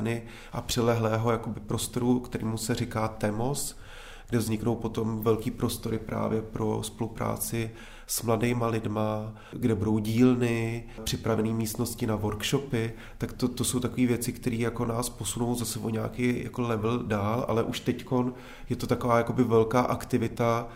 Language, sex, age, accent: Czech, male, 30-49, native